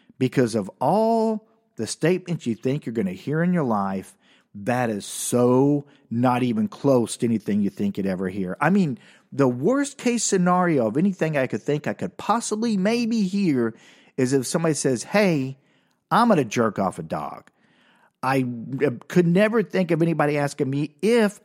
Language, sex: English, male